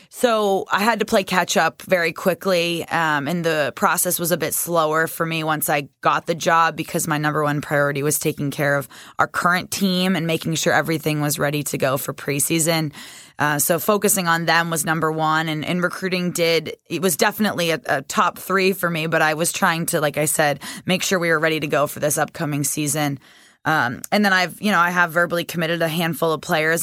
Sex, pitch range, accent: female, 155-180 Hz, American